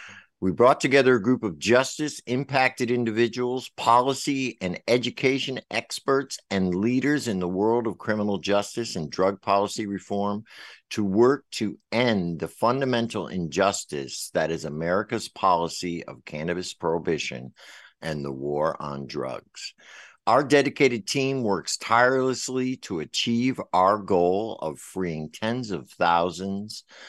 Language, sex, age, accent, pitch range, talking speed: English, male, 60-79, American, 95-145 Hz, 130 wpm